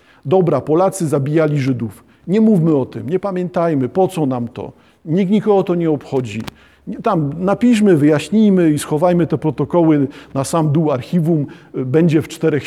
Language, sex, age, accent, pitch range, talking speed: Polish, male, 50-69, native, 140-185 Hz, 155 wpm